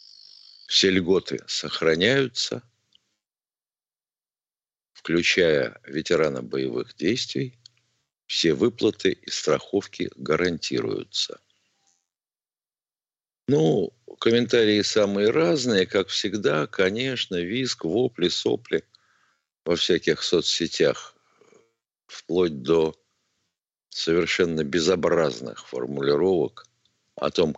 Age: 60-79